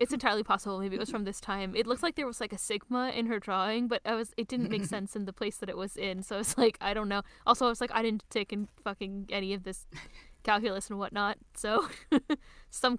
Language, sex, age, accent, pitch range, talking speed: English, female, 10-29, American, 190-225 Hz, 270 wpm